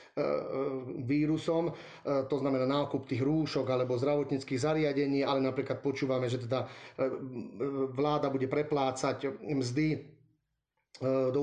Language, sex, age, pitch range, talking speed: Slovak, male, 30-49, 130-150 Hz, 100 wpm